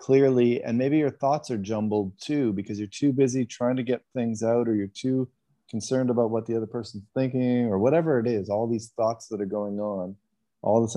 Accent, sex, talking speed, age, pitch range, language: American, male, 220 wpm, 30-49, 100-120 Hz, English